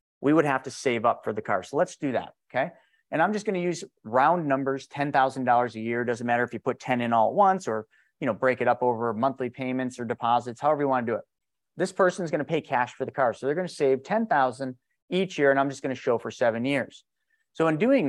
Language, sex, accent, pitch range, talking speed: English, male, American, 115-155 Hz, 260 wpm